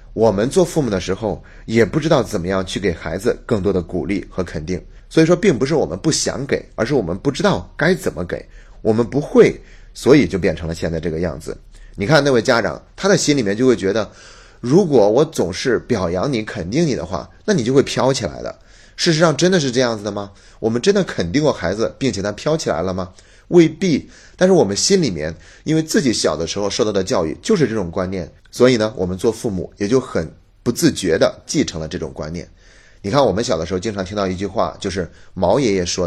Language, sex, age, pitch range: Chinese, male, 30-49, 90-120 Hz